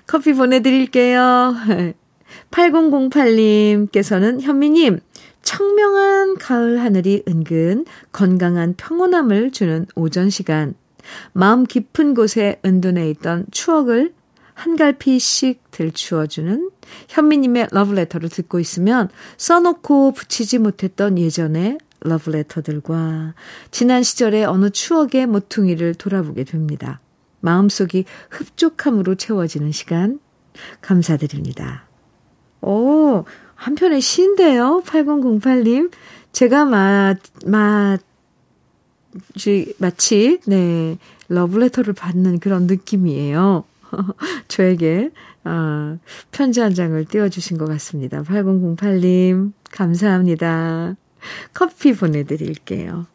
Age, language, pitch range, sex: 50-69, Korean, 175-255 Hz, female